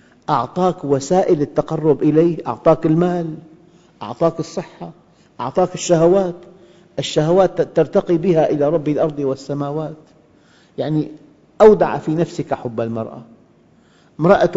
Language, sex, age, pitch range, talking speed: Arabic, male, 50-69, 130-170 Hz, 100 wpm